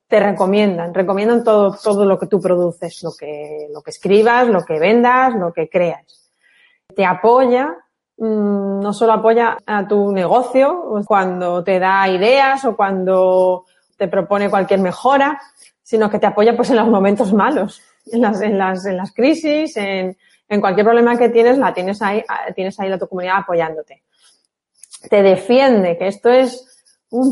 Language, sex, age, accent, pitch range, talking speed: Spanish, female, 30-49, Spanish, 185-235 Hz, 165 wpm